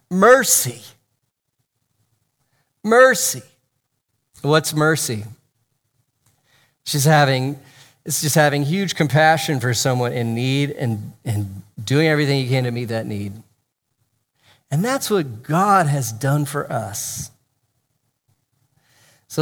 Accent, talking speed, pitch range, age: American, 105 wpm, 120-155 Hz, 40-59